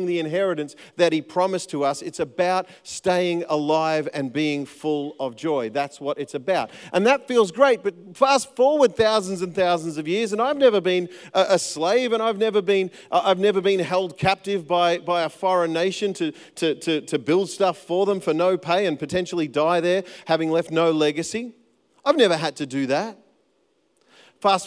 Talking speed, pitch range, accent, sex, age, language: 190 wpm, 155-195 Hz, Australian, male, 40-59, English